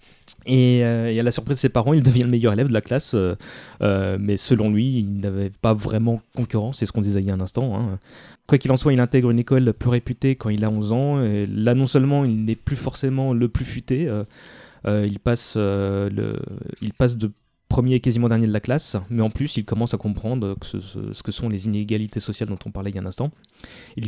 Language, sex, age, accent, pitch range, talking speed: French, male, 30-49, French, 105-130 Hz, 260 wpm